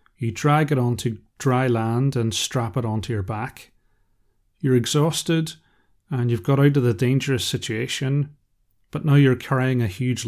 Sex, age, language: male, 30-49, English